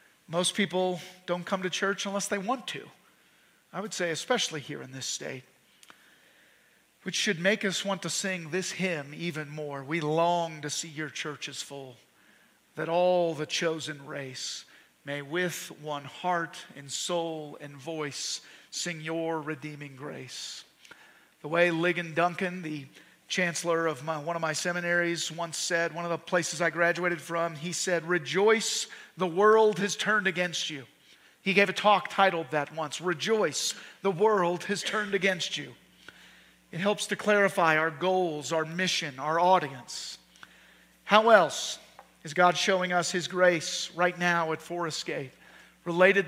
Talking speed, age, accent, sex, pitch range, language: 155 wpm, 50-69, American, male, 160-190 Hz, English